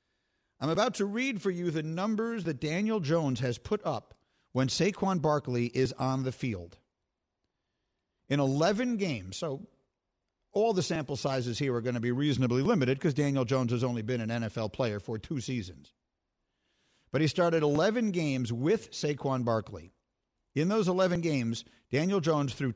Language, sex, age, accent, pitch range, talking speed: English, male, 50-69, American, 120-165 Hz, 165 wpm